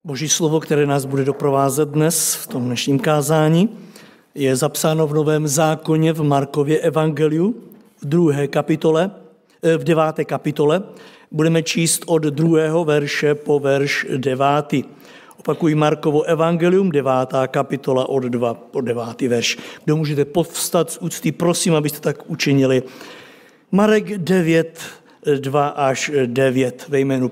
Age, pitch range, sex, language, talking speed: 60-79, 150-190 Hz, male, Czech, 125 wpm